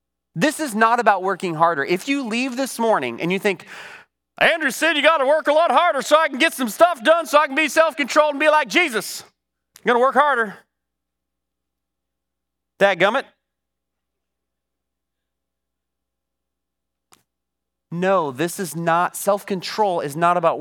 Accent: American